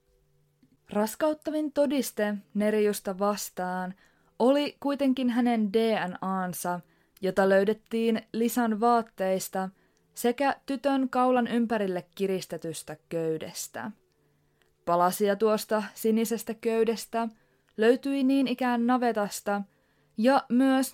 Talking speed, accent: 80 wpm, native